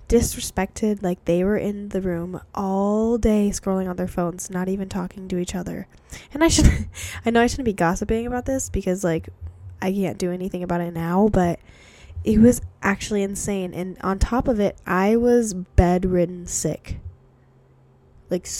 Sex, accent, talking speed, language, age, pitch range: female, American, 175 wpm, English, 10-29, 170-205 Hz